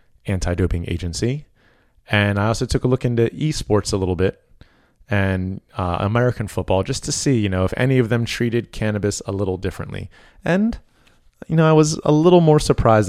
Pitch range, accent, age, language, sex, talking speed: 95-120 Hz, American, 30-49, English, male, 185 wpm